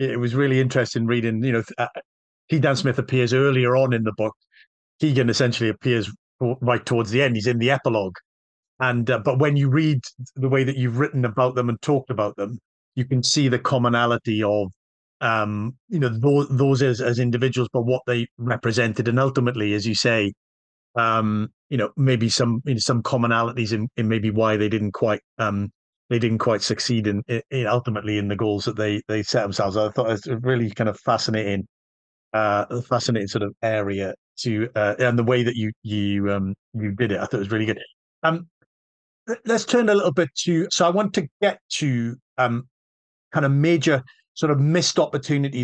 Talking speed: 200 wpm